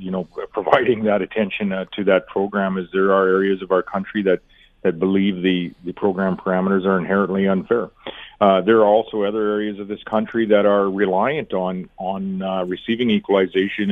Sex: male